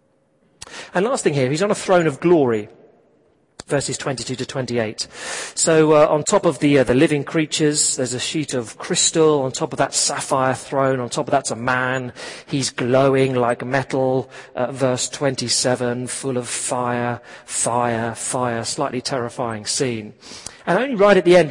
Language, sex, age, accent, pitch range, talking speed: English, male, 40-59, British, 130-185 Hz, 175 wpm